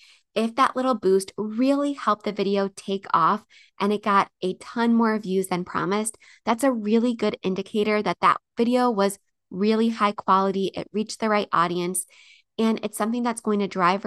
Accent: American